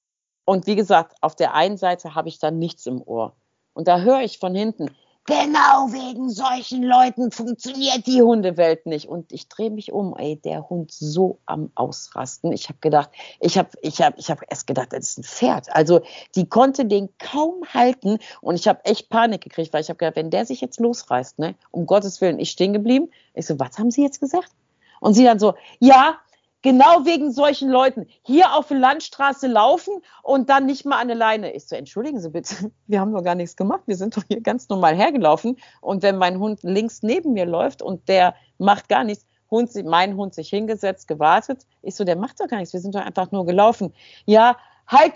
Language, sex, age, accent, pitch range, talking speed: German, female, 50-69, German, 175-255 Hz, 215 wpm